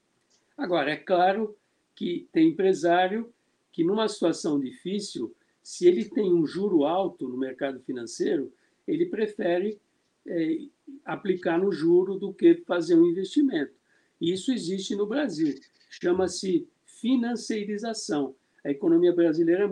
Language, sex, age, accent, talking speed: Portuguese, male, 60-79, Brazilian, 120 wpm